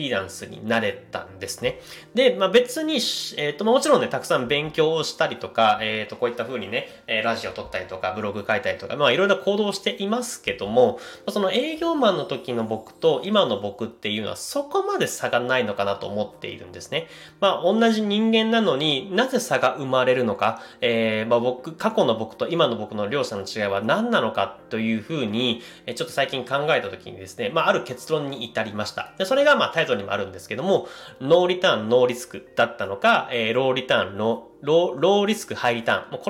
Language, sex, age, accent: Japanese, male, 30-49, native